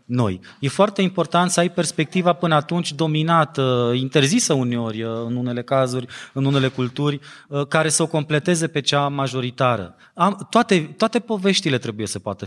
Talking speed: 150 wpm